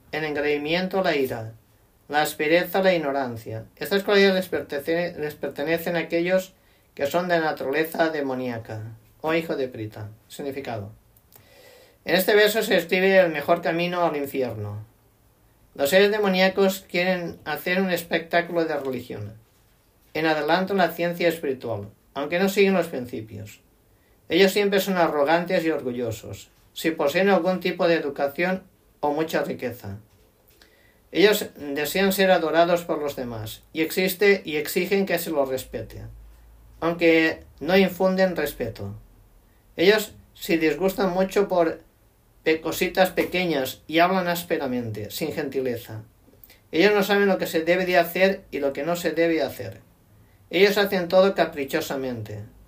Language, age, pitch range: Spanish, 50-69, 110-180 Hz